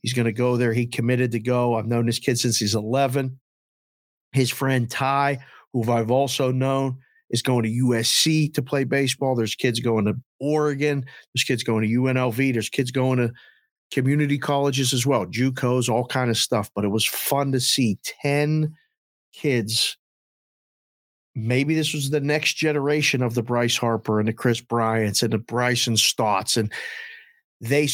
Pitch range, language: 115-145 Hz, English